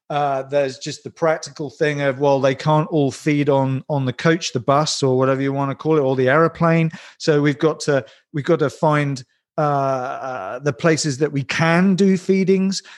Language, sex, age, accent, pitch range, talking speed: English, male, 40-59, British, 135-165 Hz, 210 wpm